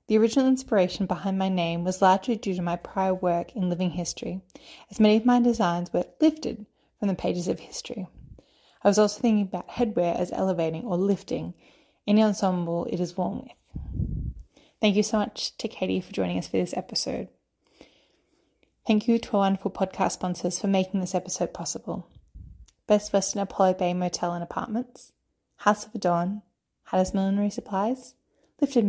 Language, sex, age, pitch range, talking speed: English, female, 20-39, 180-220 Hz, 170 wpm